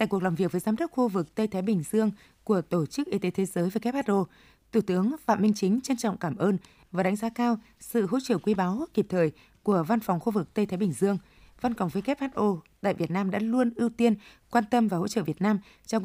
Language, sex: Vietnamese, female